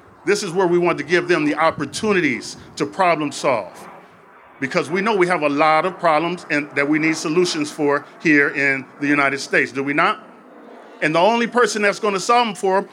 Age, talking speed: 40-59, 220 wpm